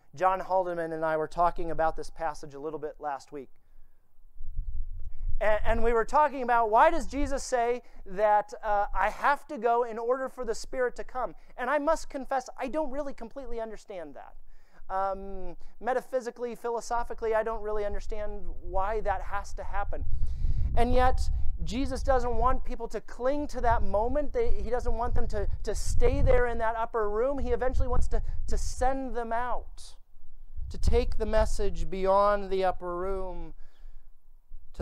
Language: English